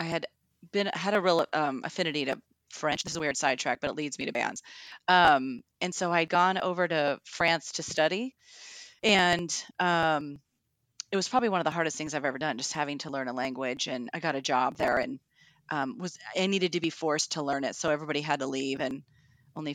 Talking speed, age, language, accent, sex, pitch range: 225 wpm, 30-49, English, American, female, 150-190 Hz